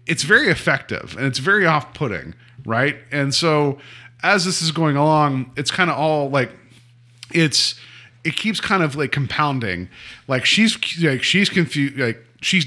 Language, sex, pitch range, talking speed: English, male, 120-160 Hz, 160 wpm